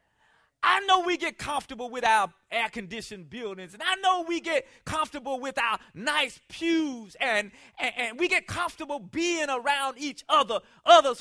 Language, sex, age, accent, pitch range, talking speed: English, male, 40-59, American, 200-285 Hz, 165 wpm